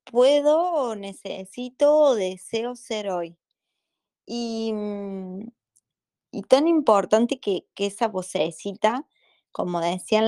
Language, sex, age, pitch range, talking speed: Spanish, female, 20-39, 180-225 Hz, 90 wpm